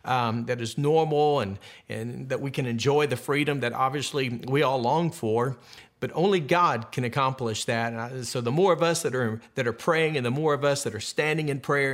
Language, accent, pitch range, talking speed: English, American, 125-160 Hz, 215 wpm